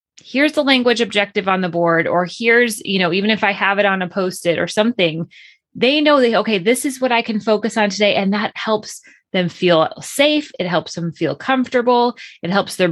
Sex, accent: female, American